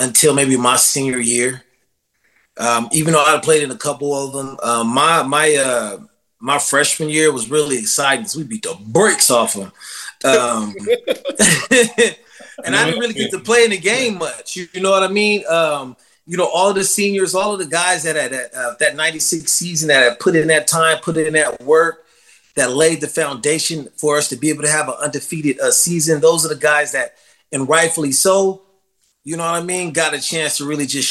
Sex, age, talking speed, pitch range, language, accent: male, 30-49, 215 wpm, 135-170 Hz, English, American